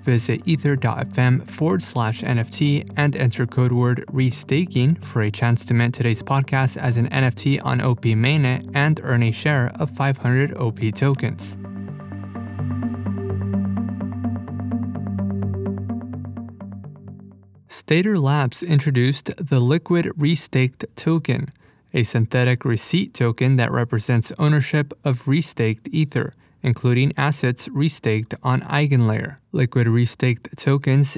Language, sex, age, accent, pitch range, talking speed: English, male, 20-39, American, 120-145 Hz, 110 wpm